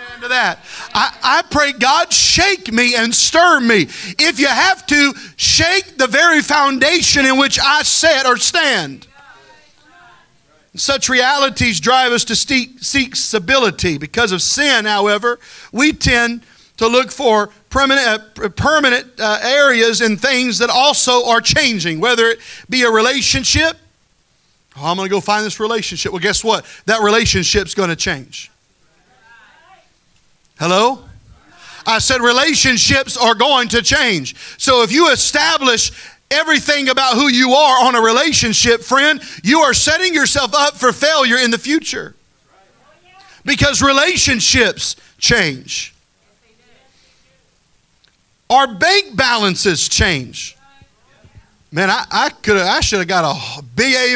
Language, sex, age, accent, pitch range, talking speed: English, male, 40-59, American, 220-285 Hz, 135 wpm